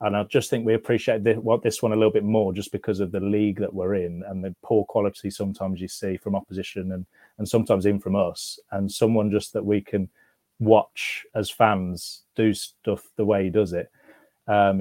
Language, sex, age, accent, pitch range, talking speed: English, male, 30-49, British, 95-110 Hz, 215 wpm